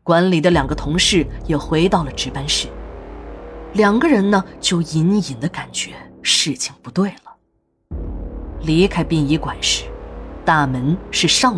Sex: female